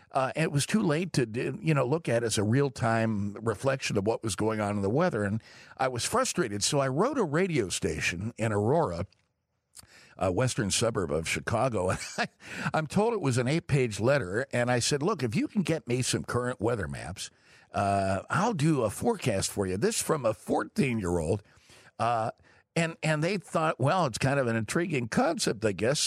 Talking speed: 210 wpm